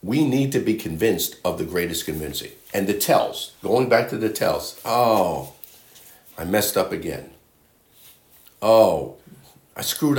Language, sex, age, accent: English, male, 50-69, American